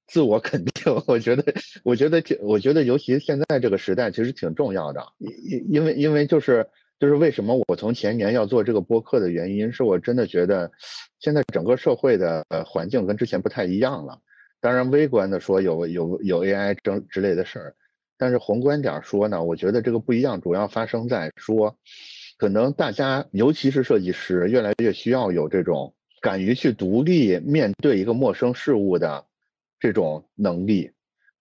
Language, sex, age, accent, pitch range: Chinese, male, 50-69, native, 100-145 Hz